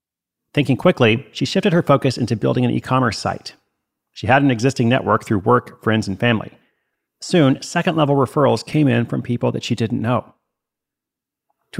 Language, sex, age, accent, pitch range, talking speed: English, male, 40-59, American, 115-145 Hz, 170 wpm